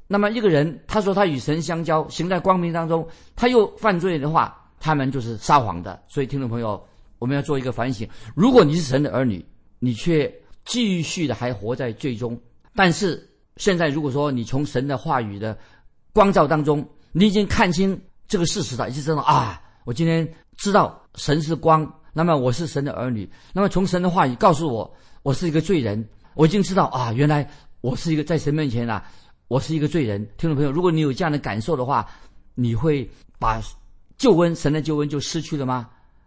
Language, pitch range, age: Chinese, 120-165 Hz, 50-69